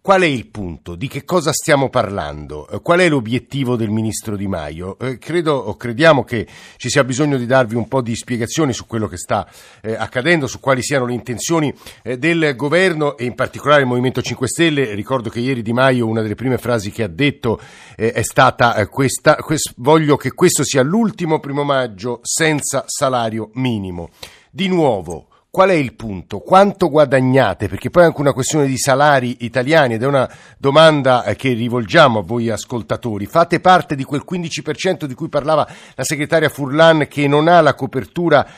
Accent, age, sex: native, 50-69, male